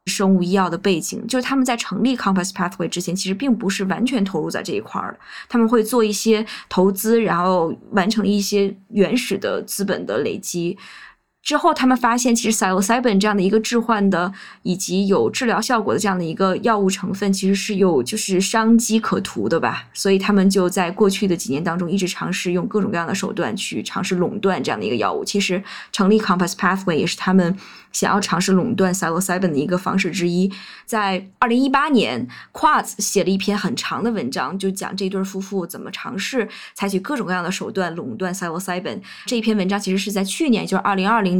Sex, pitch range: female, 185-220 Hz